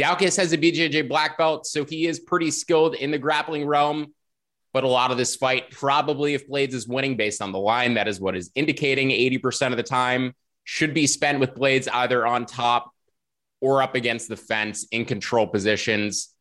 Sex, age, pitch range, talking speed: male, 20-39, 115-150 Hz, 200 wpm